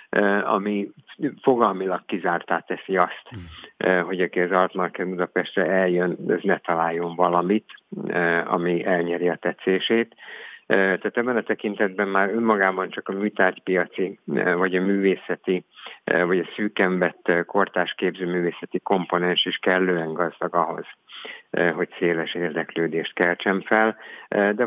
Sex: male